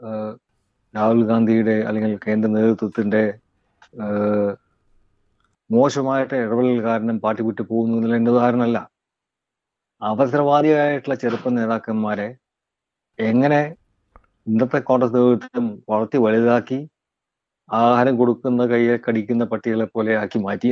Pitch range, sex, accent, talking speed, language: 110-130 Hz, male, native, 85 wpm, Malayalam